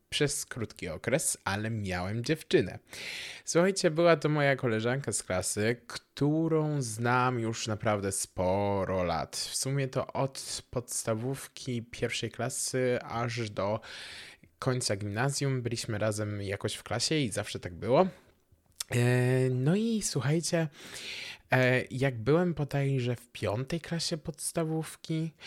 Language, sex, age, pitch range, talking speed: Polish, male, 20-39, 110-140 Hz, 115 wpm